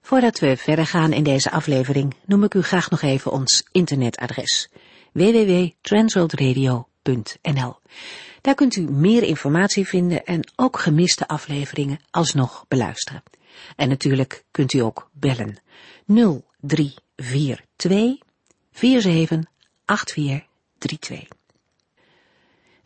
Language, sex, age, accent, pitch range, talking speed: Dutch, female, 50-69, Dutch, 140-190 Hz, 90 wpm